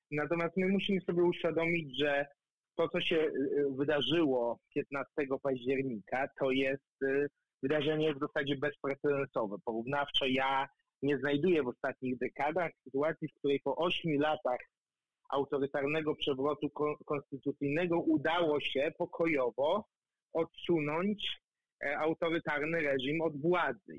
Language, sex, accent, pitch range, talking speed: Polish, male, native, 130-155 Hz, 105 wpm